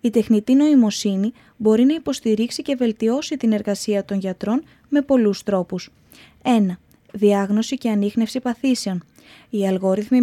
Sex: female